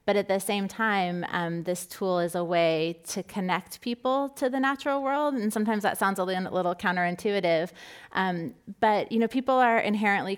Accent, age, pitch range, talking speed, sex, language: American, 30-49, 180-215 Hz, 180 wpm, female, English